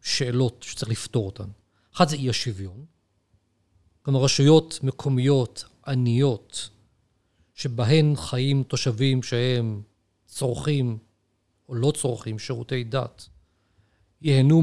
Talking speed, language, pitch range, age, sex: 95 wpm, Hebrew, 105-150 Hz, 40-59, male